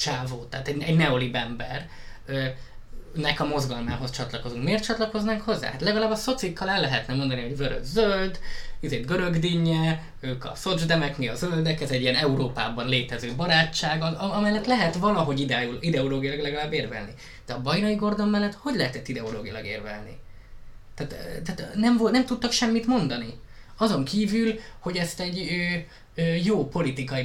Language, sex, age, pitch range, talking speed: Hungarian, male, 20-39, 125-170 Hz, 150 wpm